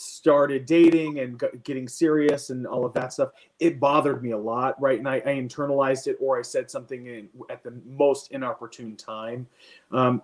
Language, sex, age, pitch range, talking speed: English, male, 30-49, 125-155 Hz, 190 wpm